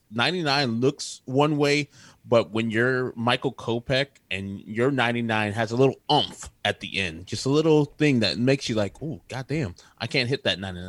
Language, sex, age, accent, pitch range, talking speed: English, male, 20-39, American, 95-115 Hz, 185 wpm